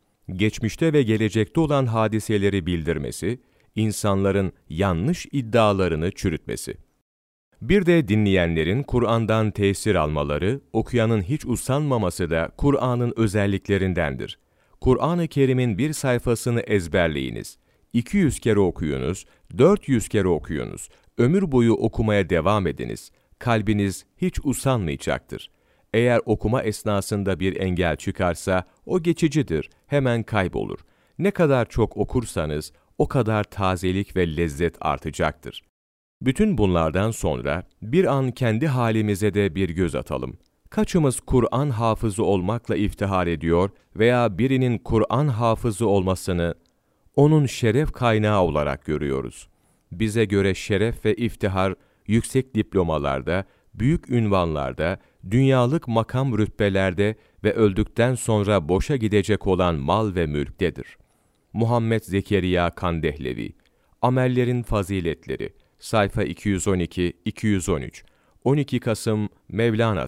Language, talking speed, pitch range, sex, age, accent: Turkish, 100 wpm, 90-120 Hz, male, 40-59, native